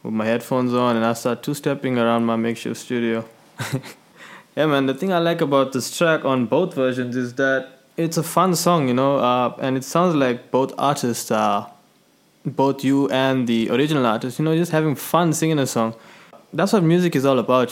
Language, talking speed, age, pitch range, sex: English, 205 wpm, 20-39, 115-140 Hz, male